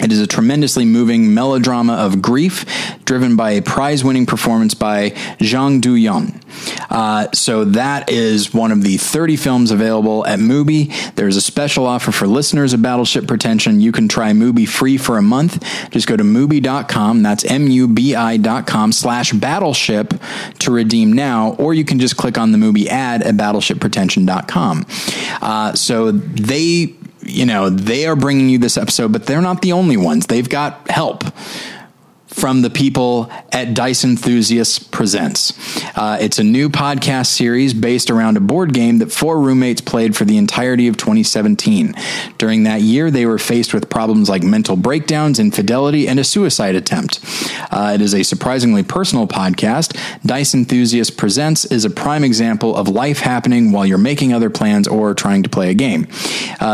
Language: English